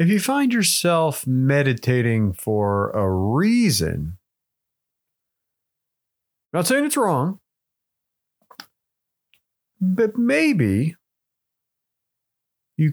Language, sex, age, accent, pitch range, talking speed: English, male, 40-59, American, 110-175 Hz, 70 wpm